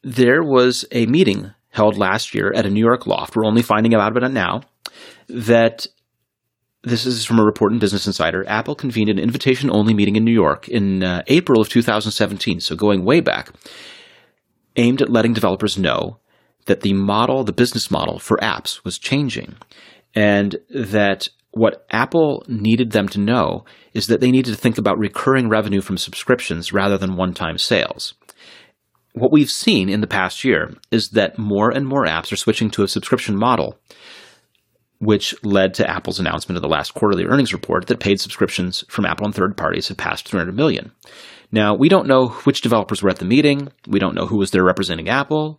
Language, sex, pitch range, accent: English, male, 100-120 Hz, American